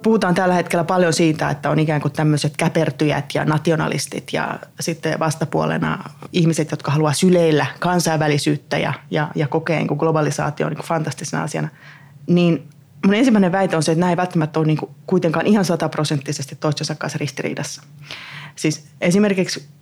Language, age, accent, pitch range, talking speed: Finnish, 20-39, native, 150-170 Hz, 150 wpm